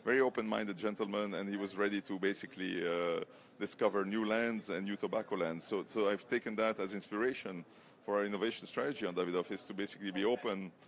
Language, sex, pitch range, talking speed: English, male, 95-110 Hz, 195 wpm